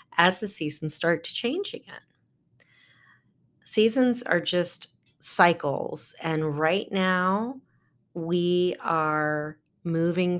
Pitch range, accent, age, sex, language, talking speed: 150-180 Hz, American, 30-49, female, English, 100 wpm